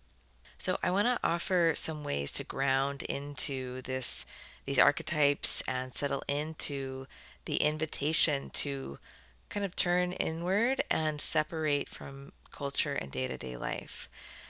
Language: English